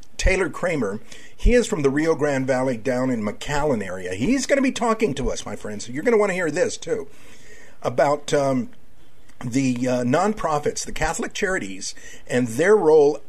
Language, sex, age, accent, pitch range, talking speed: English, male, 50-69, American, 125-185 Hz, 185 wpm